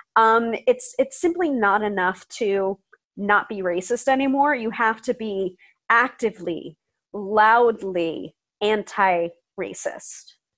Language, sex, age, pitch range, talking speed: English, female, 30-49, 200-255 Hz, 100 wpm